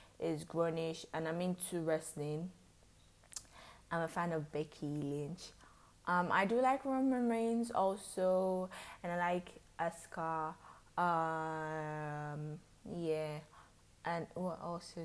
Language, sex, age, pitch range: English, female, 20-39, 155-205 Hz